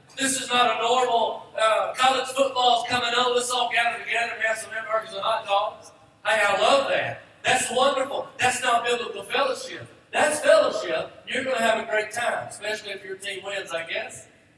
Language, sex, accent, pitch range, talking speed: English, male, American, 220-265 Hz, 200 wpm